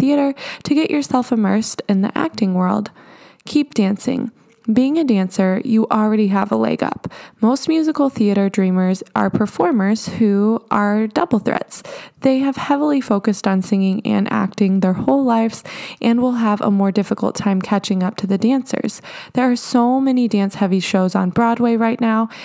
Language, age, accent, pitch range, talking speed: English, 20-39, American, 195-245 Hz, 170 wpm